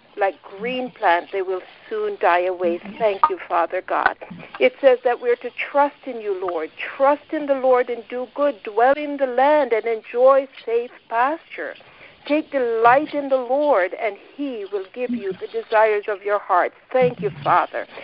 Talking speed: 185 wpm